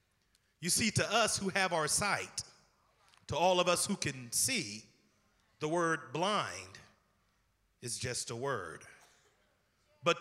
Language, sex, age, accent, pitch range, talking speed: English, male, 30-49, American, 125-185 Hz, 135 wpm